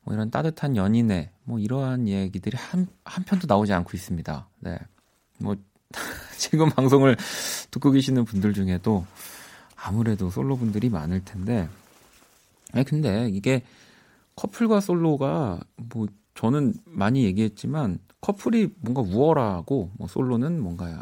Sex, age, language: male, 40-59, Korean